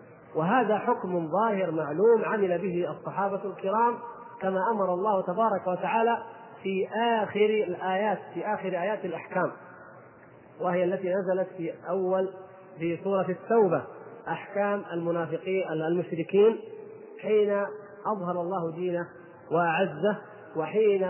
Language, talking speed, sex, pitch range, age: Arabic, 105 wpm, male, 170-215 Hz, 30-49